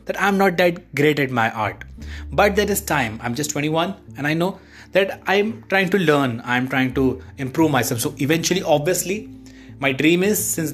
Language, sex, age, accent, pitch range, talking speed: English, male, 20-39, Indian, 125-170 Hz, 195 wpm